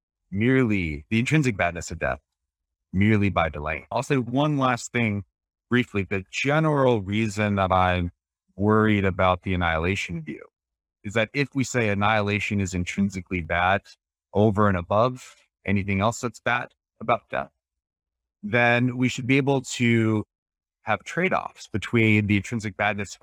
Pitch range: 90-115 Hz